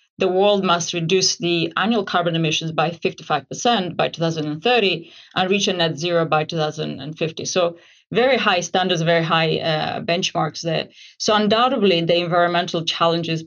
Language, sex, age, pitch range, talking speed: English, female, 30-49, 165-200 Hz, 150 wpm